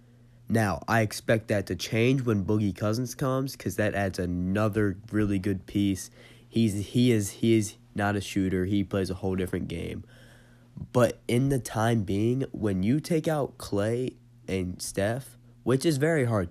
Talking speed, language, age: 170 wpm, English, 20-39